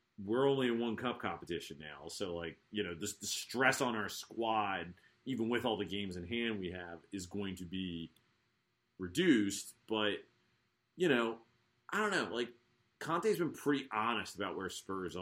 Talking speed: 180 wpm